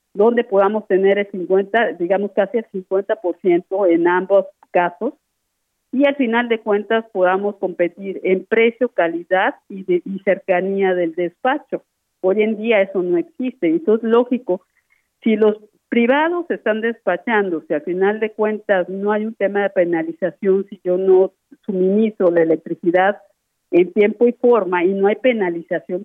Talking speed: 155 wpm